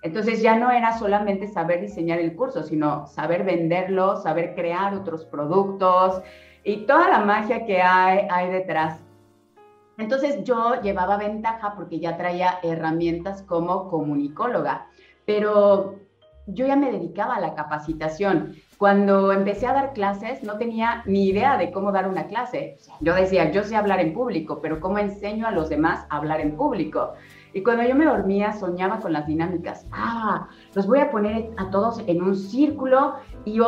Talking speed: 165 wpm